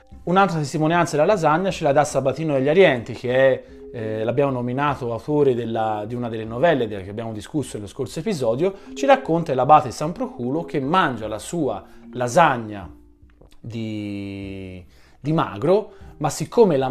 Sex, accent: male, native